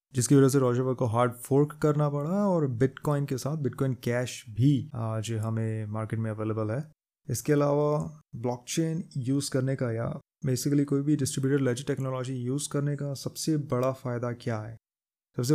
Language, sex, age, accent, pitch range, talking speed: Hindi, male, 20-39, native, 120-145 Hz, 170 wpm